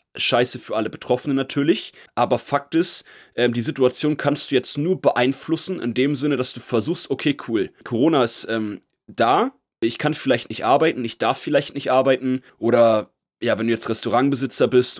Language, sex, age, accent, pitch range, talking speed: German, male, 30-49, German, 125-150 Hz, 180 wpm